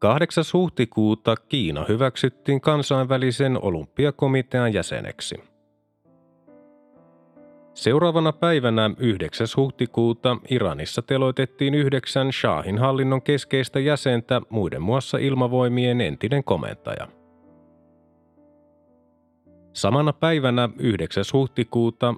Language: Finnish